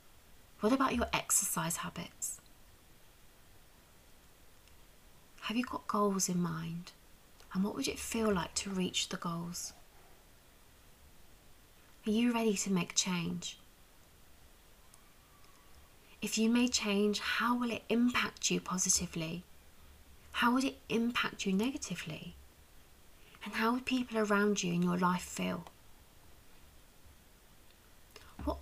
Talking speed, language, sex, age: 115 wpm, English, female, 20-39